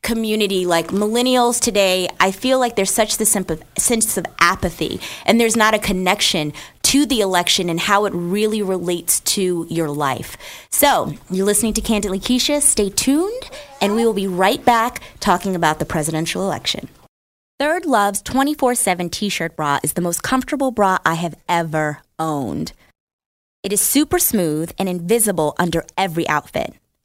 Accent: American